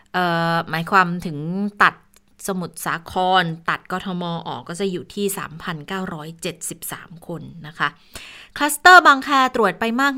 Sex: female